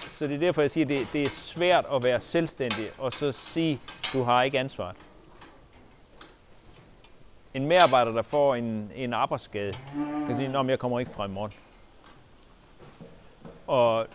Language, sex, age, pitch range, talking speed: Danish, male, 40-59, 110-145 Hz, 155 wpm